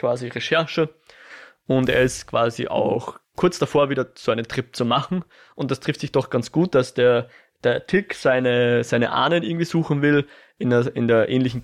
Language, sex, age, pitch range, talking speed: German, male, 20-39, 125-160 Hz, 190 wpm